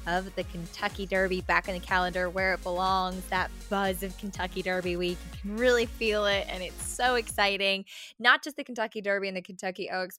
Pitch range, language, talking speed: 185-230 Hz, English, 205 wpm